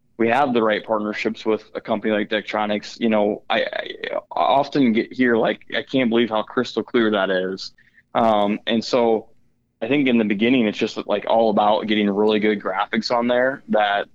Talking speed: 195 wpm